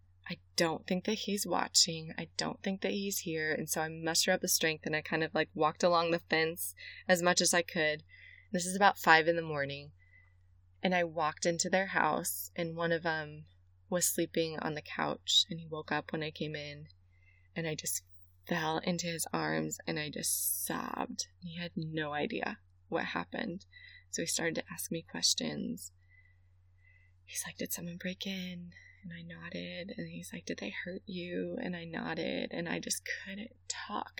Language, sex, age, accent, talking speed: English, female, 20-39, American, 195 wpm